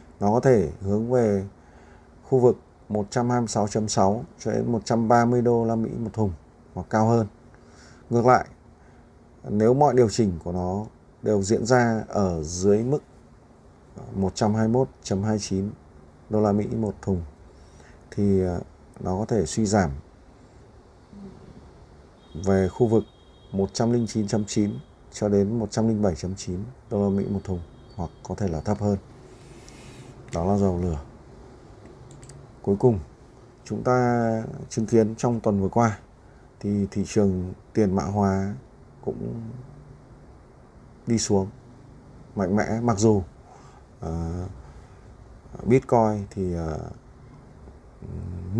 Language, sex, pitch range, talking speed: Vietnamese, male, 95-120 Hz, 115 wpm